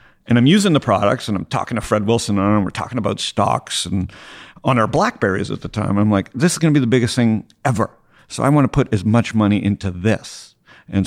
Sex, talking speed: male, 250 wpm